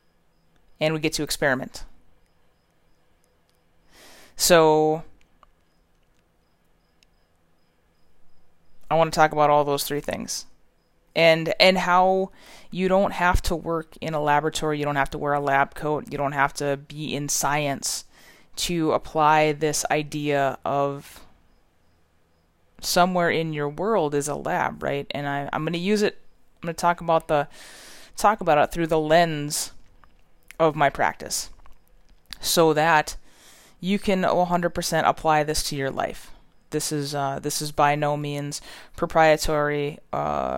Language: English